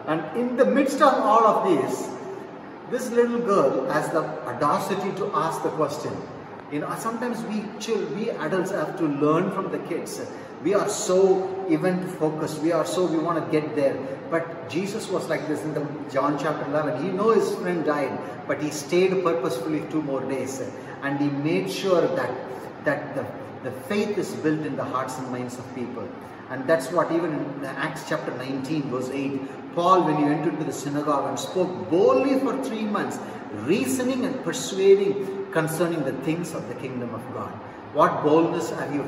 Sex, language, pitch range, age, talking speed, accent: male, English, 135-180 Hz, 30-49, 185 wpm, Indian